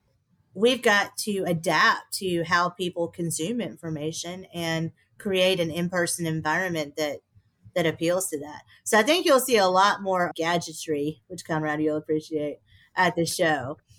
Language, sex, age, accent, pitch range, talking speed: English, female, 30-49, American, 150-180 Hz, 150 wpm